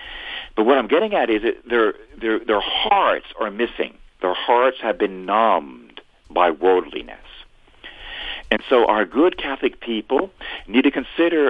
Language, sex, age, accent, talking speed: English, male, 50-69, American, 150 wpm